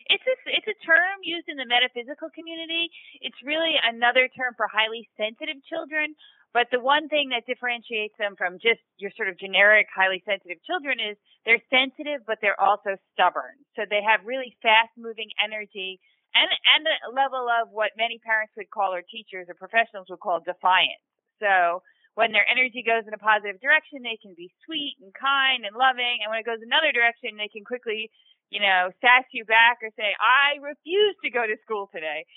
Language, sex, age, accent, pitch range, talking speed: English, female, 30-49, American, 195-255 Hz, 195 wpm